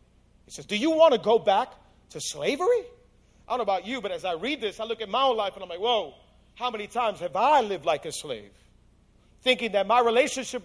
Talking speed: 240 wpm